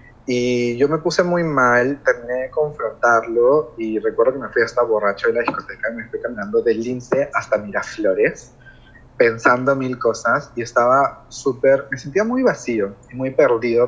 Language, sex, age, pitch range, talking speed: Spanish, male, 20-39, 110-135 Hz, 175 wpm